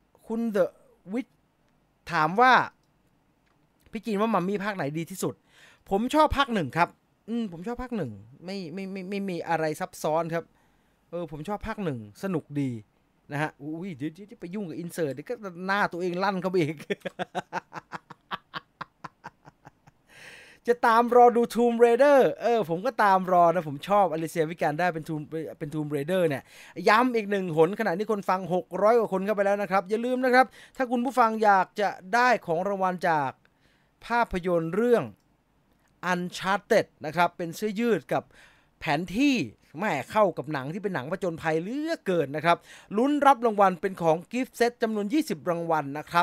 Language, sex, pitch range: English, male, 165-225 Hz